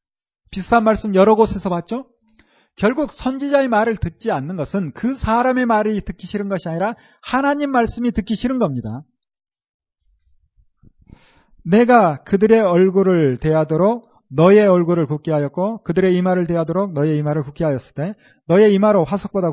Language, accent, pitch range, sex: Korean, native, 170-230 Hz, male